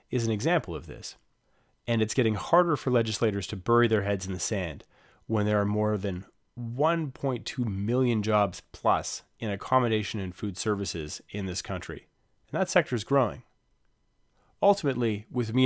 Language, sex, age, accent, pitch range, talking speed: English, male, 30-49, American, 95-120 Hz, 165 wpm